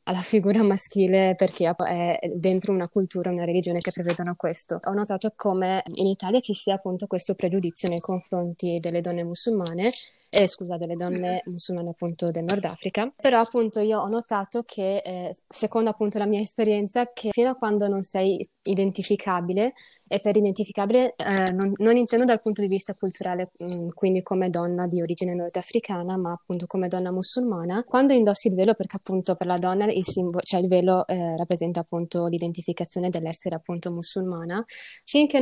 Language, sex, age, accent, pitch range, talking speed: Italian, female, 20-39, native, 180-210 Hz, 175 wpm